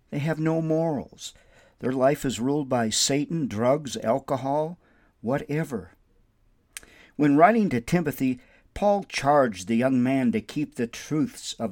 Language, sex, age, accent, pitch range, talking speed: English, male, 50-69, American, 120-190 Hz, 140 wpm